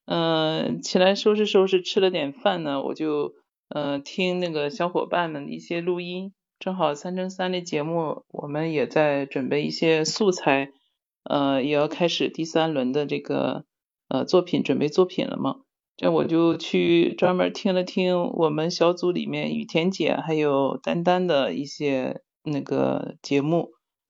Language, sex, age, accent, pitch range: Chinese, male, 50-69, native, 145-185 Hz